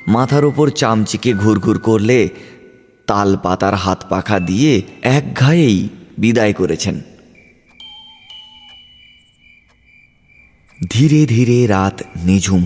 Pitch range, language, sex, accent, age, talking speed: 95-130 Hz, Bengali, male, native, 30-49, 80 wpm